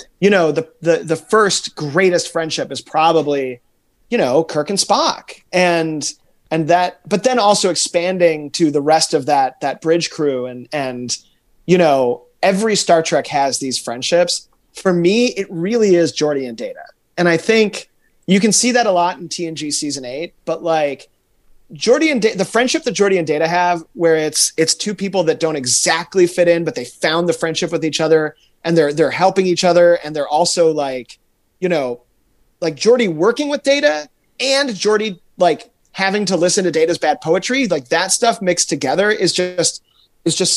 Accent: American